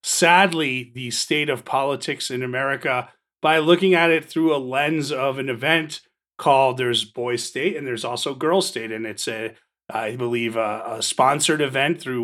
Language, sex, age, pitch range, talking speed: English, male, 30-49, 125-160 Hz, 175 wpm